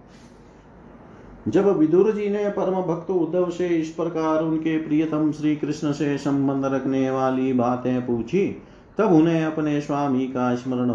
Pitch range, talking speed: 125-155 Hz, 140 wpm